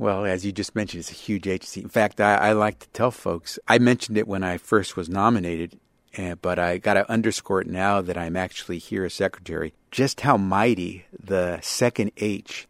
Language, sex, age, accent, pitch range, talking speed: English, male, 50-69, American, 95-115 Hz, 215 wpm